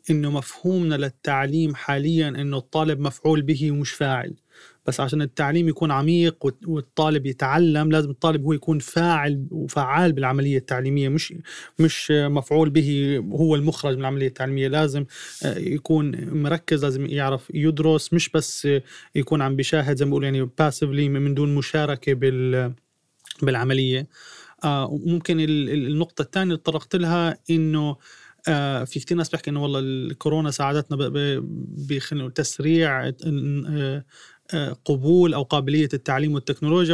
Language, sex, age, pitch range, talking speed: Arabic, male, 30-49, 140-160 Hz, 125 wpm